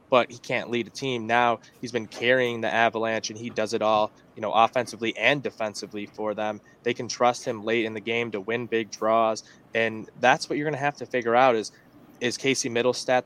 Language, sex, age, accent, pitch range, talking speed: English, male, 20-39, American, 110-125 Hz, 225 wpm